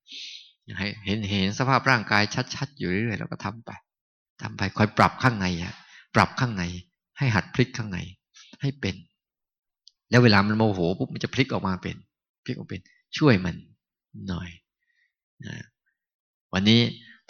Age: 20-39